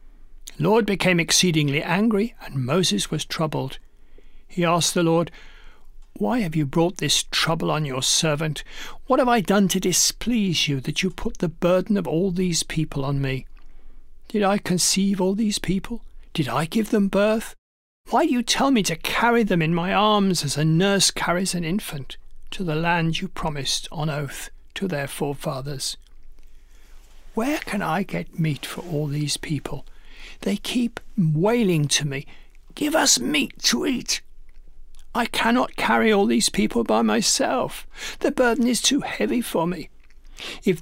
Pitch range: 155-215 Hz